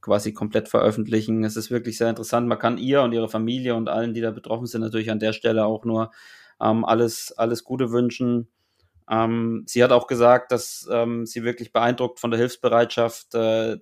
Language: German